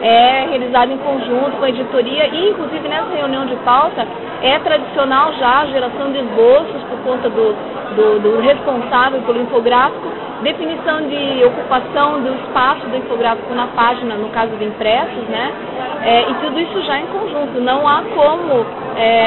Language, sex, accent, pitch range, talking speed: Portuguese, female, Brazilian, 240-280 Hz, 165 wpm